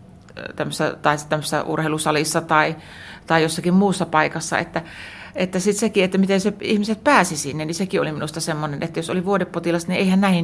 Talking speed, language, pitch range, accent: 180 wpm, Finnish, 160-195 Hz, native